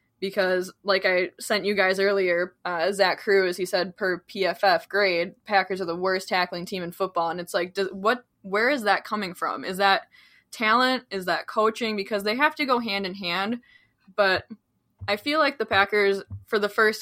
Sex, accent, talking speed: female, American, 200 wpm